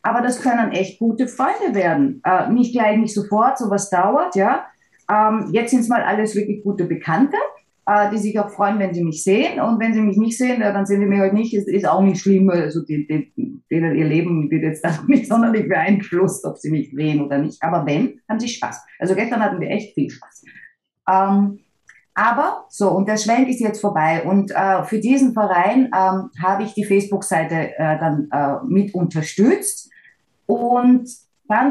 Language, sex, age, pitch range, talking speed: German, female, 20-39, 180-225 Hz, 205 wpm